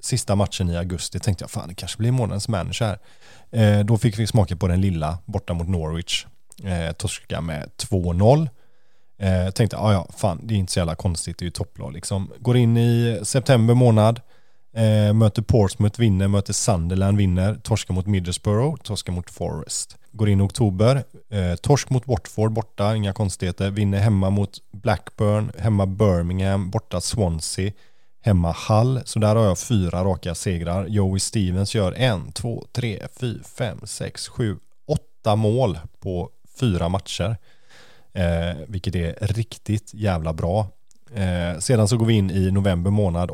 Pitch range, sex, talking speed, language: 95-115 Hz, male, 165 wpm, Swedish